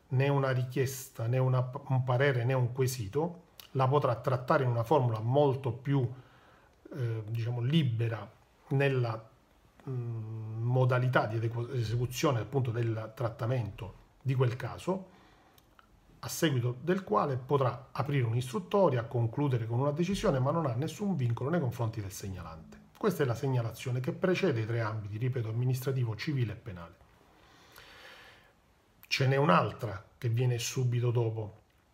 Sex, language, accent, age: male, Italian, native, 40-59